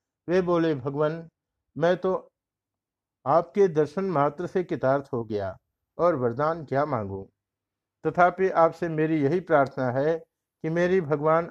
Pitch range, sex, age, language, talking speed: 130-165 Hz, male, 50-69, Hindi, 130 wpm